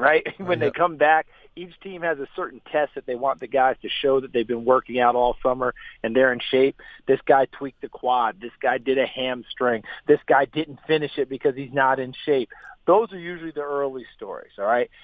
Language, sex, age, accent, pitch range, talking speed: English, male, 40-59, American, 125-150 Hz, 230 wpm